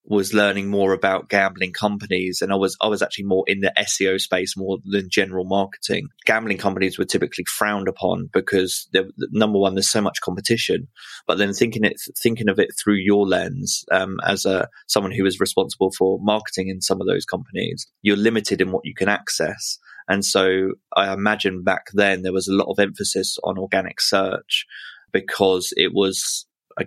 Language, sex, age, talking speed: English, male, 20-39, 190 wpm